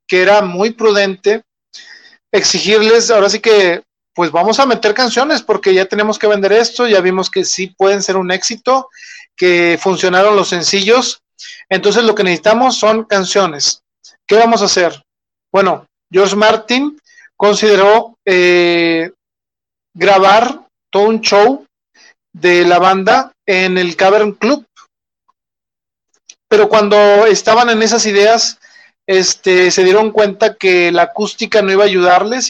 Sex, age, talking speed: male, 40-59, 135 wpm